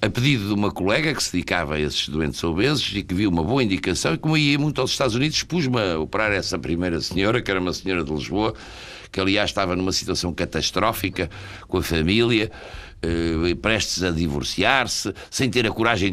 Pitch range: 90-120 Hz